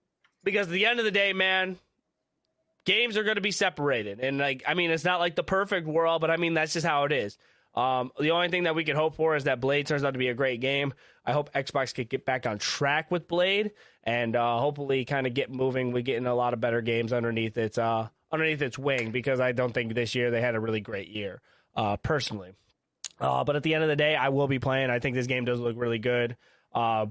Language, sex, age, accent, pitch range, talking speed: English, male, 20-39, American, 125-160 Hz, 255 wpm